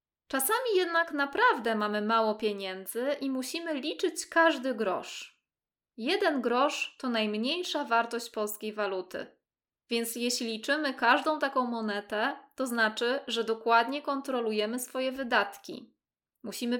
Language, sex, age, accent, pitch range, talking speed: Polish, female, 20-39, native, 225-285 Hz, 115 wpm